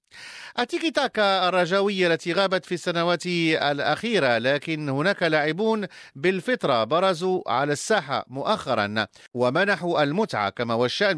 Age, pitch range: 50-69, 140-200 Hz